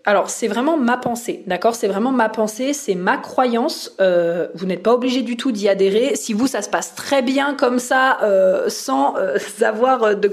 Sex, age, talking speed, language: female, 20-39, 210 wpm, French